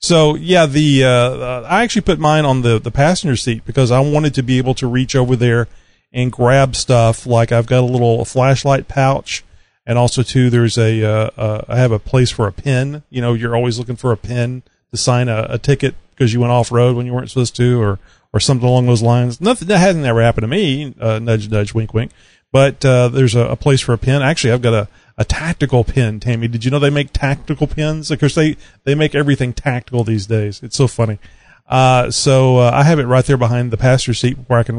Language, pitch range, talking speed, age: English, 115-135 Hz, 240 wpm, 40-59